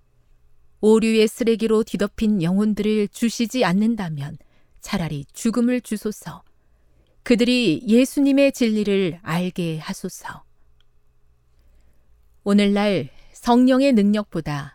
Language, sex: Korean, female